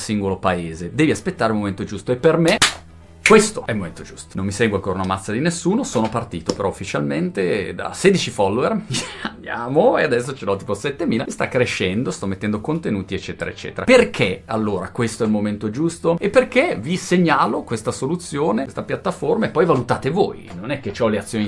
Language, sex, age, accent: Italian, male, 30-49, native